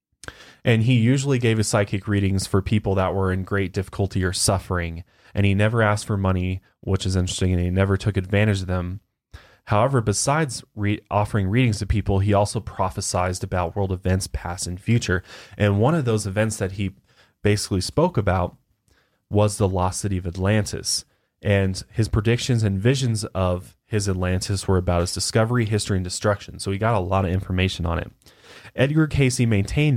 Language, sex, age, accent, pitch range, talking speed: English, male, 20-39, American, 95-110 Hz, 180 wpm